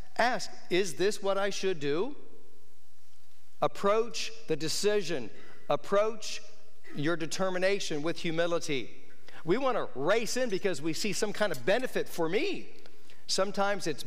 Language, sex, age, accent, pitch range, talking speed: English, male, 50-69, American, 140-185 Hz, 130 wpm